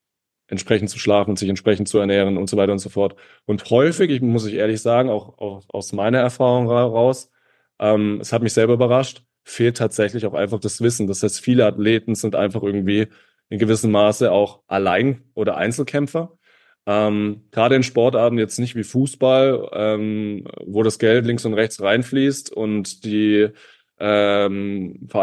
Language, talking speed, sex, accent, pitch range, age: German, 170 wpm, male, German, 100-120 Hz, 20-39